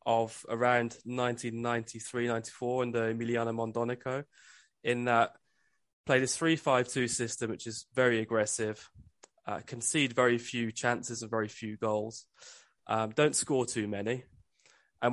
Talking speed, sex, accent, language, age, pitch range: 135 wpm, male, British, English, 20-39, 110-125 Hz